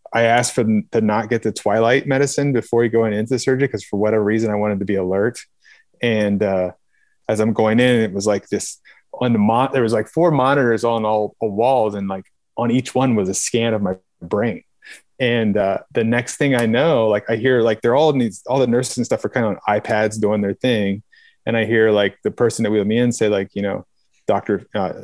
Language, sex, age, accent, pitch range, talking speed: English, male, 30-49, American, 105-120 Hz, 235 wpm